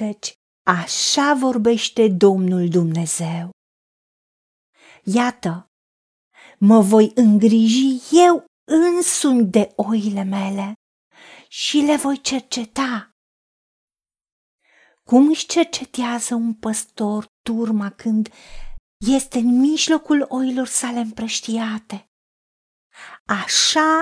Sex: female